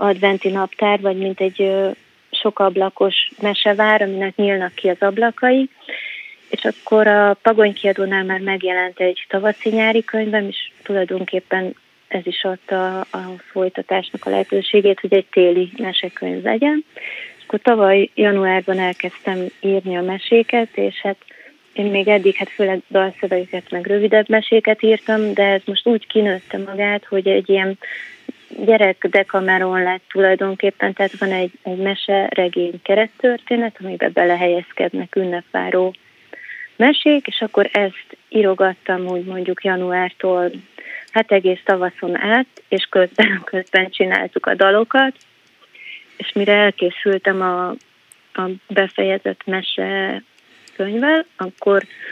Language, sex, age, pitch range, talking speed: Hungarian, female, 30-49, 185-215 Hz, 125 wpm